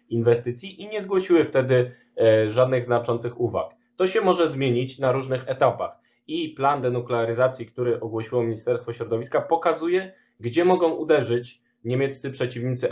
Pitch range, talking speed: 115-140 Hz, 130 wpm